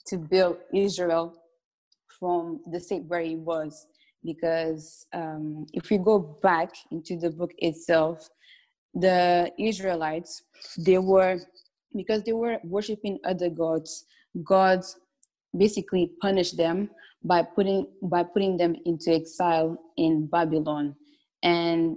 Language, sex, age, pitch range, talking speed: English, female, 20-39, 165-195 Hz, 115 wpm